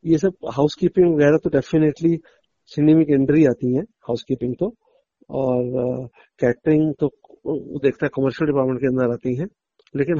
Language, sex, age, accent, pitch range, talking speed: Hindi, male, 50-69, native, 155-230 Hz, 155 wpm